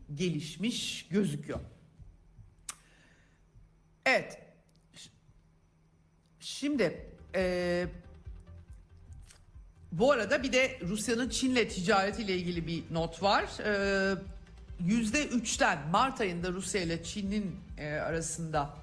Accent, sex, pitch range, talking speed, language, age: native, male, 145-190 Hz, 80 wpm, Turkish, 60-79